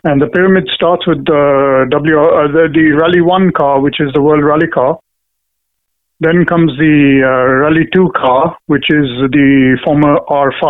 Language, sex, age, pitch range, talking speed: English, male, 50-69, 135-165 Hz, 170 wpm